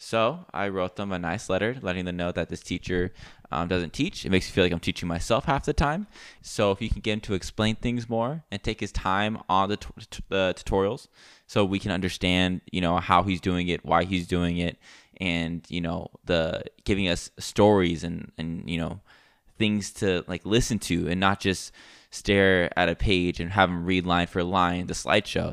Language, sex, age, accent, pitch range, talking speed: English, male, 10-29, American, 85-100 Hz, 220 wpm